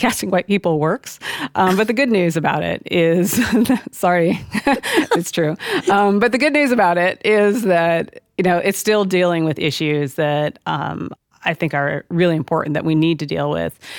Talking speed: 190 wpm